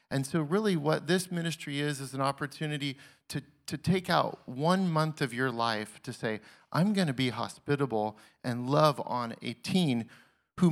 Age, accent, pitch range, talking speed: 40-59, American, 120-160 Hz, 180 wpm